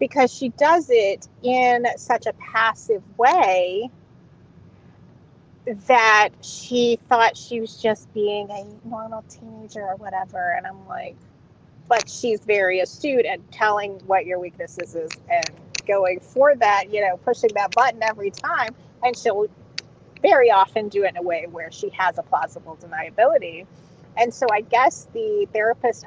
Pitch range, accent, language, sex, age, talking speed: 190-245 Hz, American, English, female, 30-49, 150 wpm